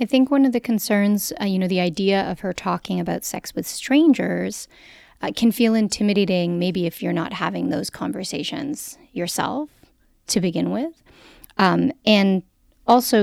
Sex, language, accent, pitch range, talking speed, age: female, English, American, 180-250 Hz, 165 wpm, 30-49